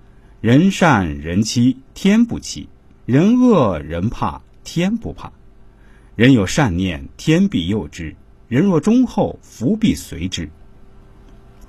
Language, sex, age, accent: Chinese, male, 50-69, native